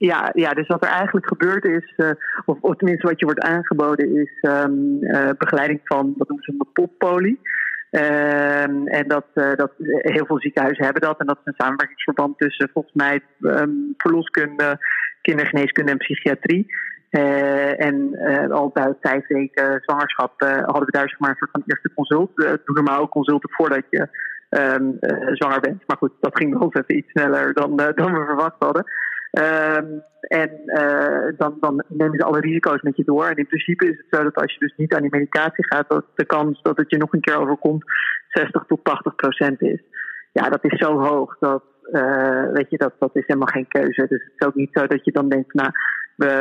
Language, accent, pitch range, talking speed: Dutch, Dutch, 140-155 Hz, 205 wpm